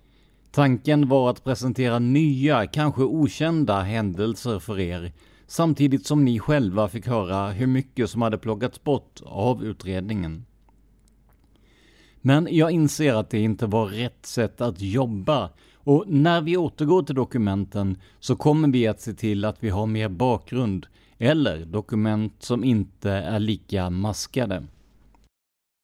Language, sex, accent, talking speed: Swedish, male, native, 135 wpm